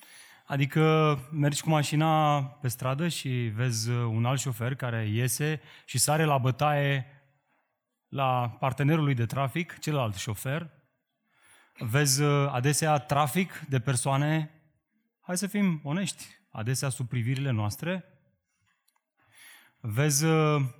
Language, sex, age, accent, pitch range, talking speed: Romanian, male, 30-49, native, 130-175 Hz, 110 wpm